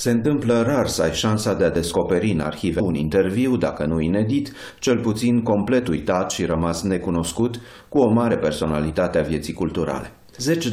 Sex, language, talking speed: male, Romanian, 175 wpm